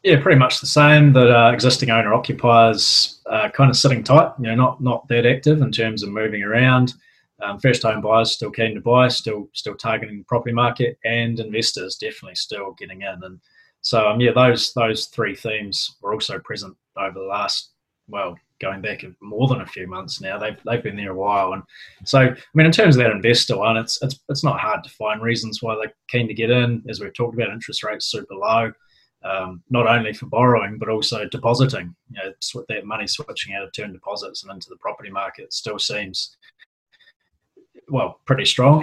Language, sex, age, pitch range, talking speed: English, male, 20-39, 110-135 Hz, 210 wpm